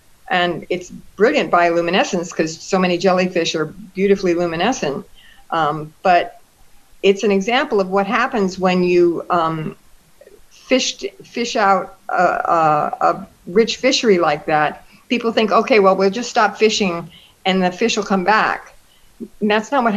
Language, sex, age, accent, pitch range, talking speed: English, female, 50-69, American, 180-225 Hz, 150 wpm